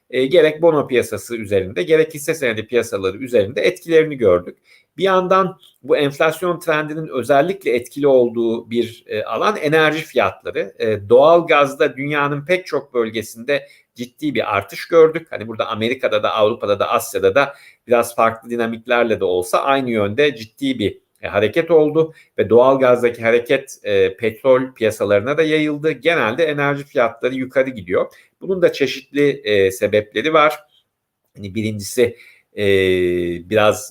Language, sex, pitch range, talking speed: Turkish, male, 110-160 Hz, 140 wpm